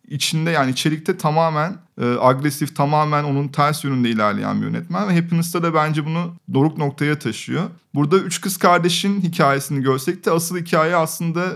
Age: 30-49